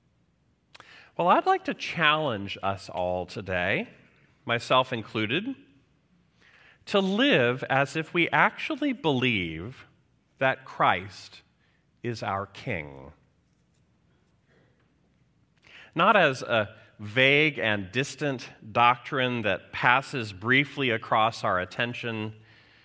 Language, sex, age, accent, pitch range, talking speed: English, male, 40-59, American, 105-150 Hz, 90 wpm